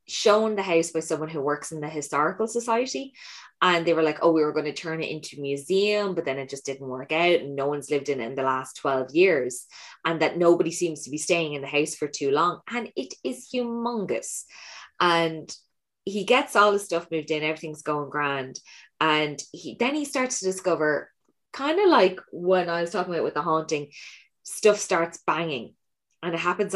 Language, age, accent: English, 20-39, Irish